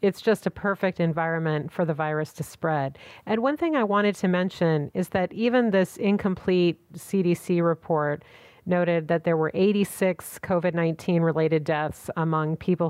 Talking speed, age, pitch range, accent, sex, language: 160 wpm, 40-59, 155-185 Hz, American, female, English